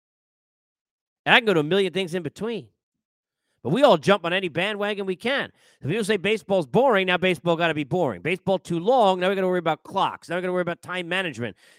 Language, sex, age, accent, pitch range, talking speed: English, male, 40-59, American, 175-250 Hz, 245 wpm